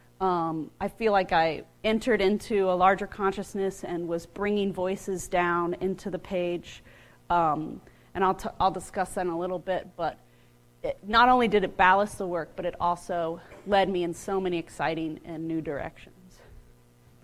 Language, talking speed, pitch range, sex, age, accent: English, 165 wpm, 165-200 Hz, female, 30-49, American